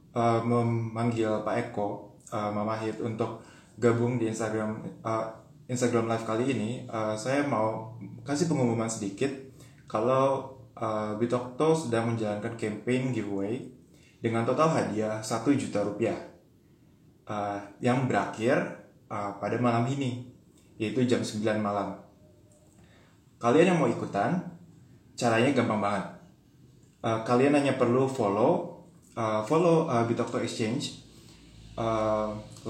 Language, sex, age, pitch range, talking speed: Indonesian, male, 20-39, 110-130 Hz, 115 wpm